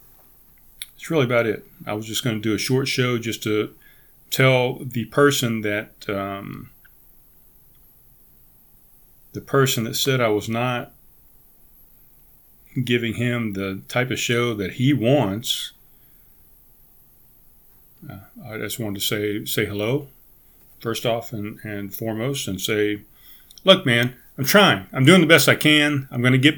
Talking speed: 145 wpm